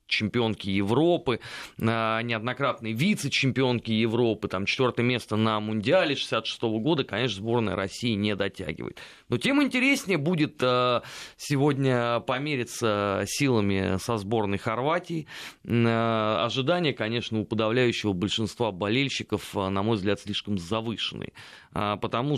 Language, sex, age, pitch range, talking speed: Russian, male, 30-49, 110-140 Hz, 105 wpm